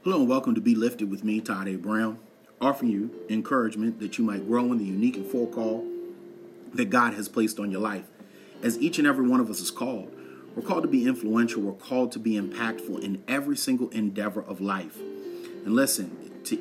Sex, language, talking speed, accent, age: male, English, 215 wpm, American, 30-49